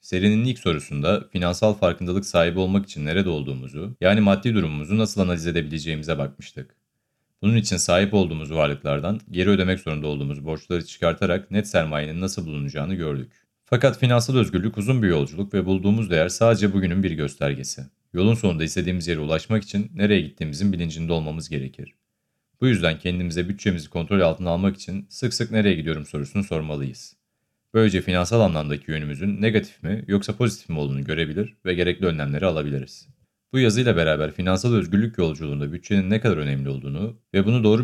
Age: 40-59